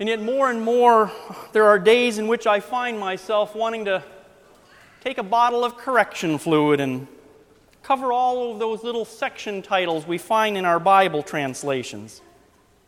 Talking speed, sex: 165 wpm, male